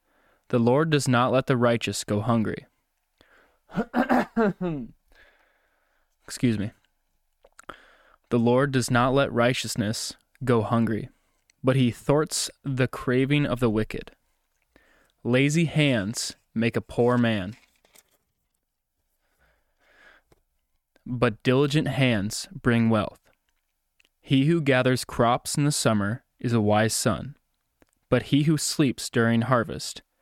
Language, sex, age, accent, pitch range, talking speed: English, male, 20-39, American, 115-140 Hz, 110 wpm